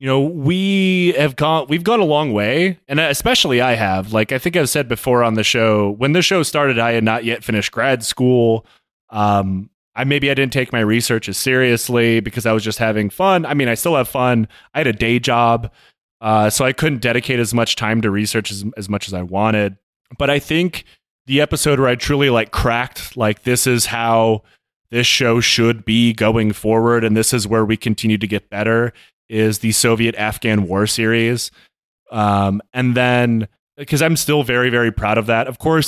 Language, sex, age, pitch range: English, male, 20-39, 110-130 Hz